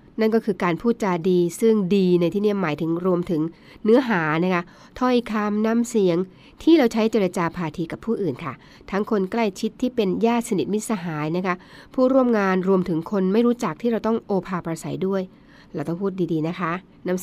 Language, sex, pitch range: Thai, female, 175-220 Hz